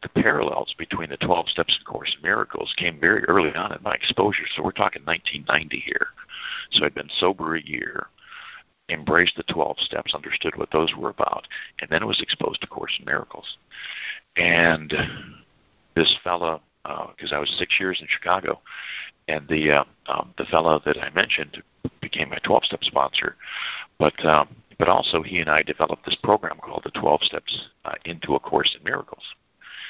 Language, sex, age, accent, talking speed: English, male, 50-69, American, 185 wpm